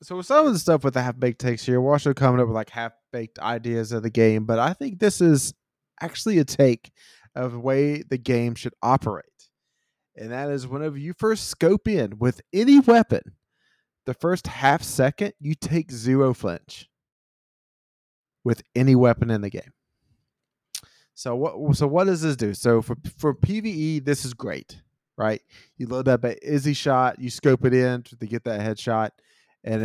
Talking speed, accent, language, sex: 185 wpm, American, English, male